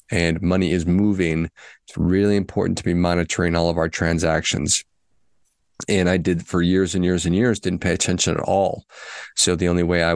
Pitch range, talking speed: 85-100 Hz, 195 wpm